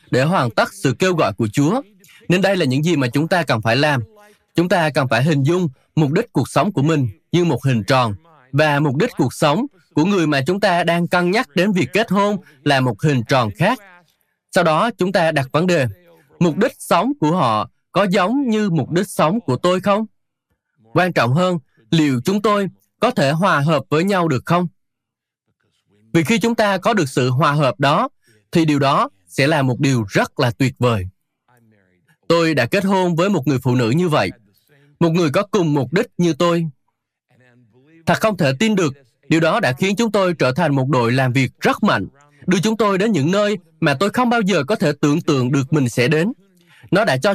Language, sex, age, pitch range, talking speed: Vietnamese, male, 20-39, 140-195 Hz, 220 wpm